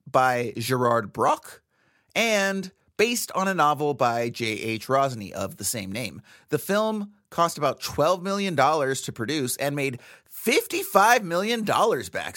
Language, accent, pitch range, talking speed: English, American, 120-195 Hz, 135 wpm